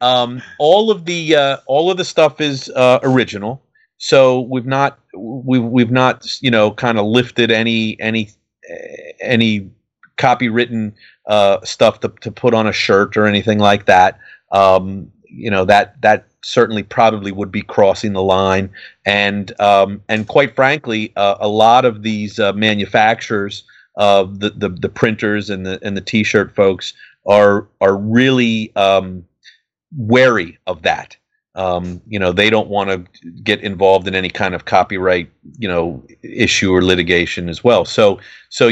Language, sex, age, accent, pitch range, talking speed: English, male, 30-49, American, 95-115 Hz, 165 wpm